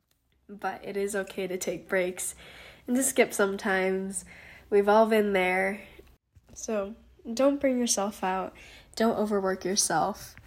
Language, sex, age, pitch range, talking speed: English, female, 10-29, 185-215 Hz, 130 wpm